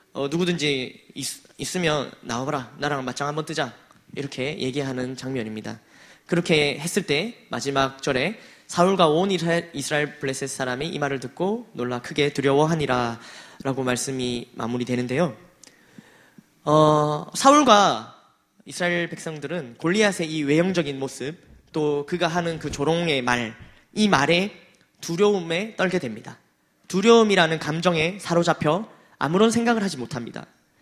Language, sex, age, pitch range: Korean, male, 20-39, 140-185 Hz